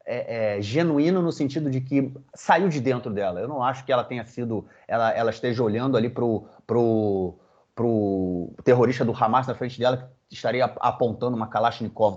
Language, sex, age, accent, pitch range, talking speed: Portuguese, male, 30-49, Brazilian, 110-135 Hz, 180 wpm